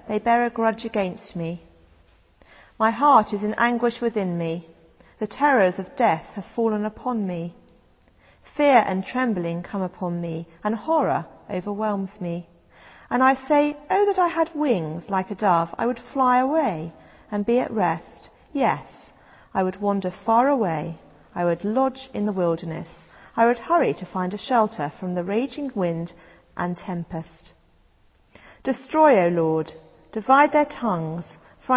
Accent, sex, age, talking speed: British, female, 40-59, 155 wpm